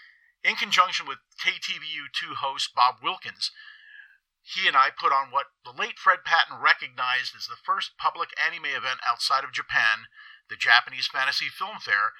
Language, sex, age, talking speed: English, male, 50-69, 155 wpm